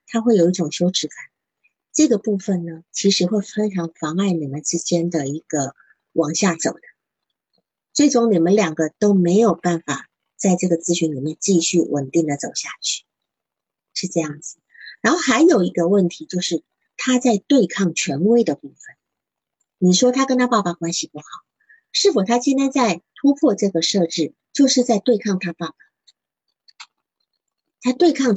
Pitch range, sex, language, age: 165-235 Hz, female, Chinese, 50-69